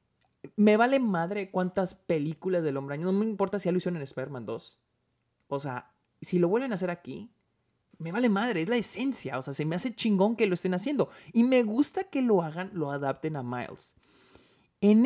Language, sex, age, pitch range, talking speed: Spanish, male, 30-49, 140-225 Hz, 200 wpm